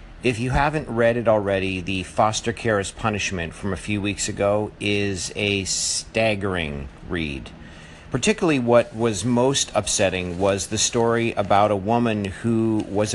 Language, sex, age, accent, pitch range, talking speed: English, male, 50-69, American, 95-130 Hz, 150 wpm